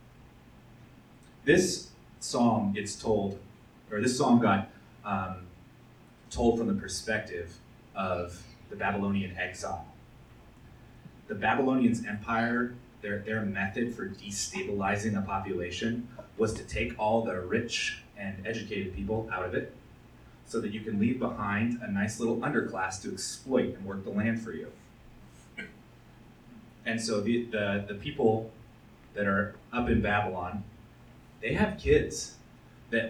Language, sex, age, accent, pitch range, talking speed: English, male, 30-49, American, 100-120 Hz, 130 wpm